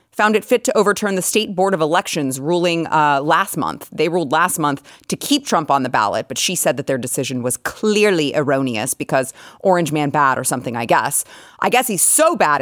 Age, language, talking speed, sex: 30-49, English, 220 wpm, female